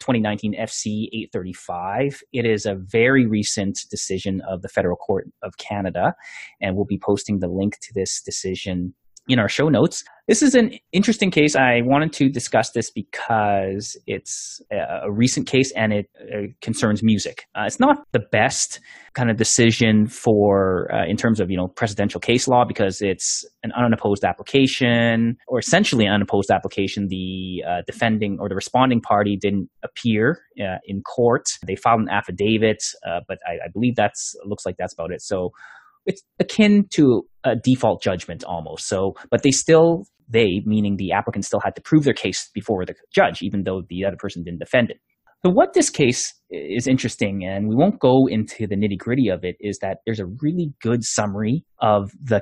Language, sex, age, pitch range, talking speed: English, male, 30-49, 100-130 Hz, 180 wpm